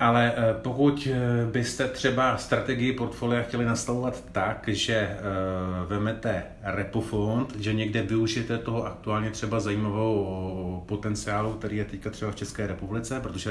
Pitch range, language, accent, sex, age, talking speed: 100-120 Hz, Czech, native, male, 30-49, 125 wpm